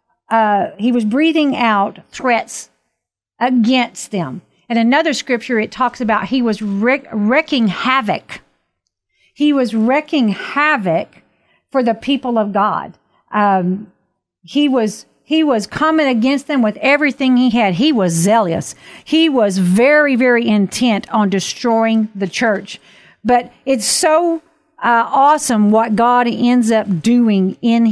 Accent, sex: American, female